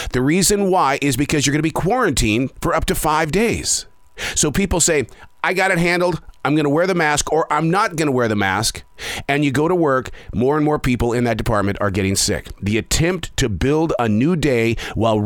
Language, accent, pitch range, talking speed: English, American, 115-165 Hz, 230 wpm